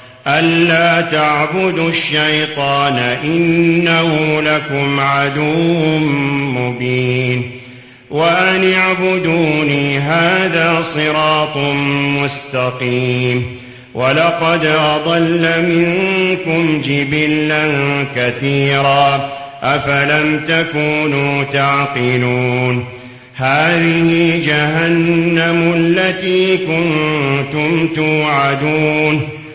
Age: 40-59